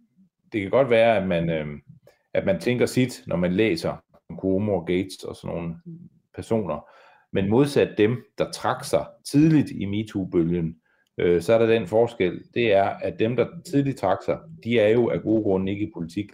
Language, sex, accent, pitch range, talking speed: Danish, male, native, 85-130 Hz, 200 wpm